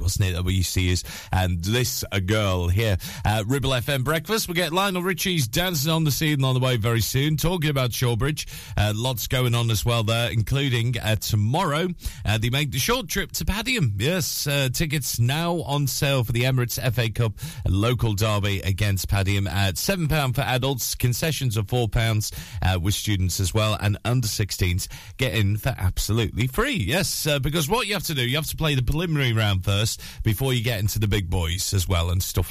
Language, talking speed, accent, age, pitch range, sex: English, 200 wpm, British, 30-49, 100-135 Hz, male